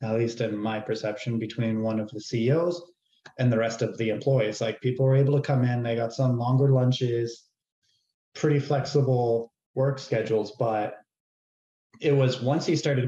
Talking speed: 175 wpm